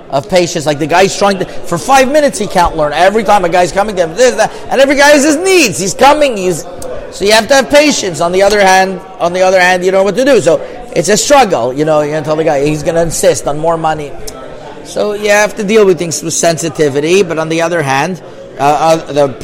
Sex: male